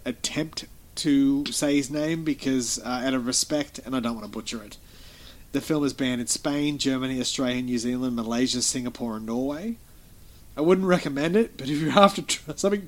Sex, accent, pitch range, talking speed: male, Australian, 110-135 Hz, 190 wpm